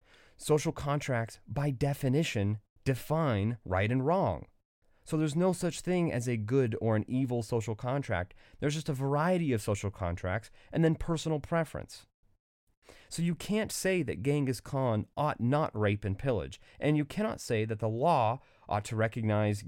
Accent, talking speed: American, 165 wpm